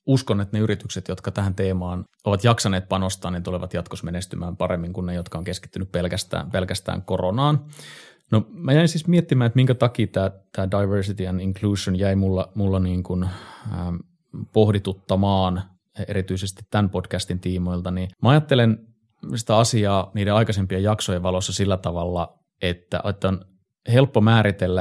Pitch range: 90-110 Hz